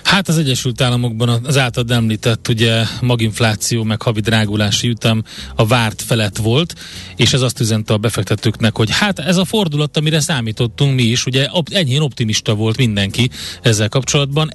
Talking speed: 160 wpm